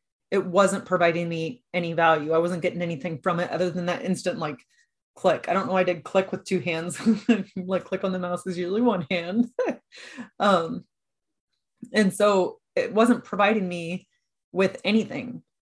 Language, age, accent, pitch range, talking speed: English, 30-49, American, 175-205 Hz, 175 wpm